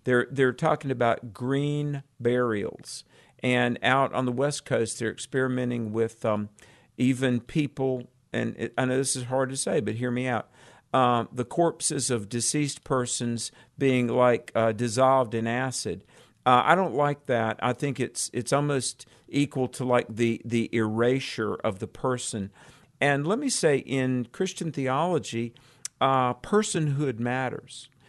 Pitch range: 120-145 Hz